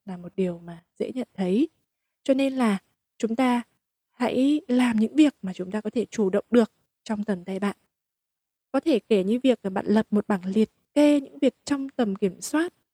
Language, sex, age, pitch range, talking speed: Vietnamese, female, 20-39, 205-270 Hz, 215 wpm